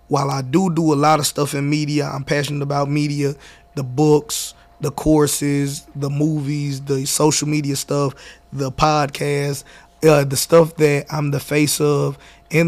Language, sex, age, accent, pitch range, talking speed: English, male, 20-39, American, 140-155 Hz, 165 wpm